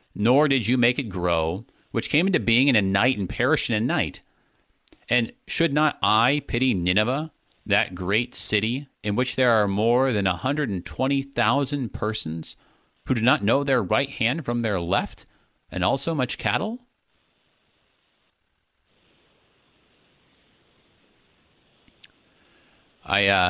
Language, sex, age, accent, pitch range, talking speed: English, male, 40-59, American, 90-120 Hz, 130 wpm